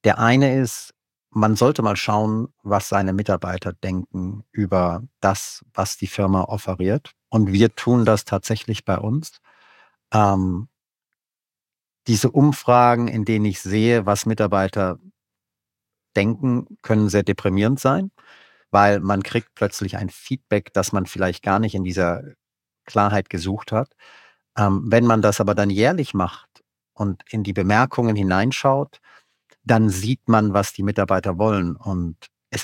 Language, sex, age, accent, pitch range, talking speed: German, male, 50-69, German, 95-115 Hz, 140 wpm